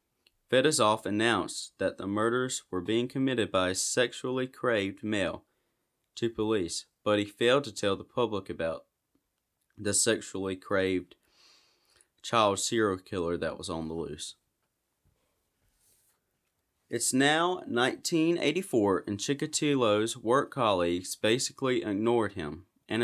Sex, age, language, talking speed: male, 20-39, English, 115 wpm